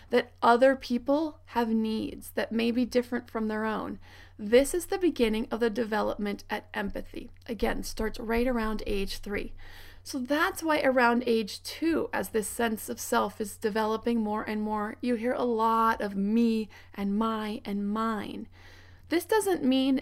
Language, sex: English, female